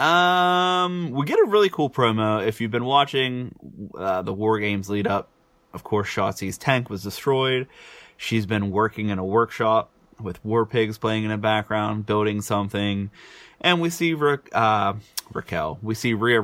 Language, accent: English, American